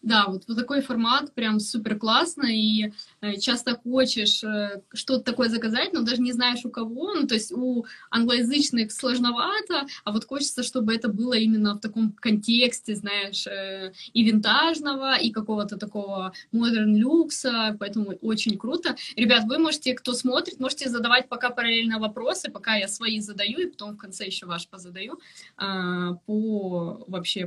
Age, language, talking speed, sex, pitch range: 20-39, Russian, 160 wpm, female, 215-275 Hz